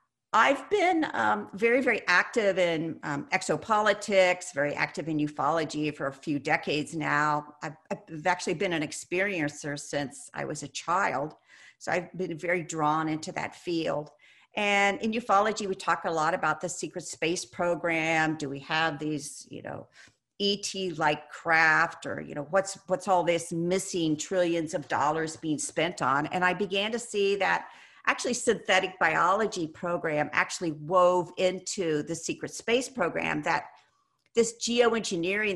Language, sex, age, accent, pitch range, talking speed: English, female, 50-69, American, 155-200 Hz, 155 wpm